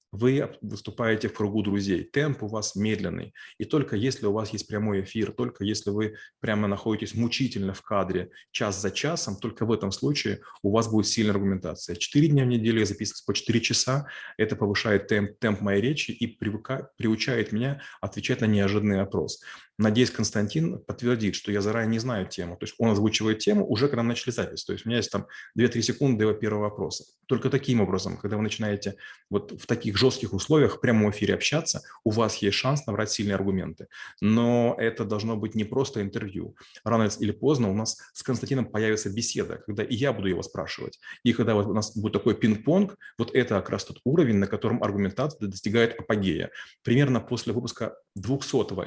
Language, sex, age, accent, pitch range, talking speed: Russian, male, 30-49, native, 105-120 Hz, 190 wpm